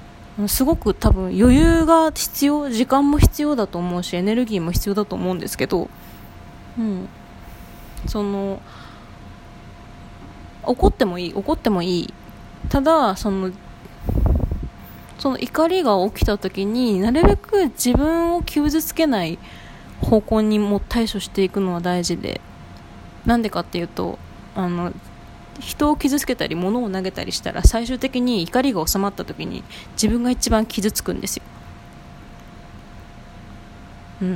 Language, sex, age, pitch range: Japanese, female, 20-39, 175-245 Hz